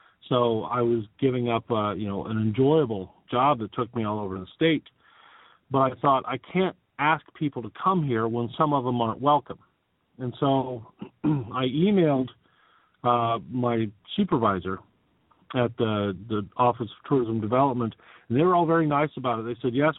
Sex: male